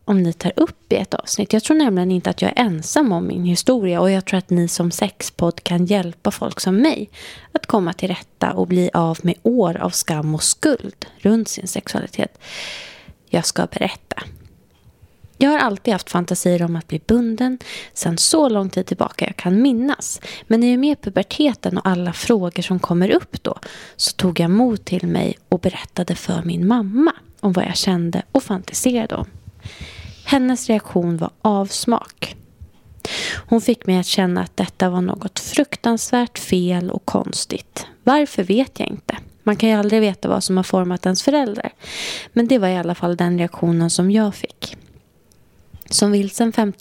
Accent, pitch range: native, 180-230 Hz